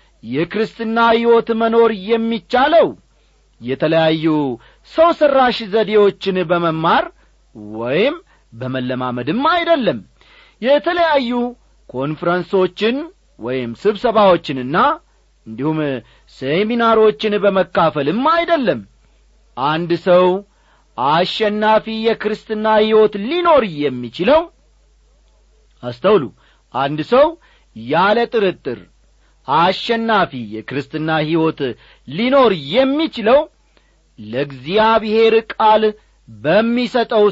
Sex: male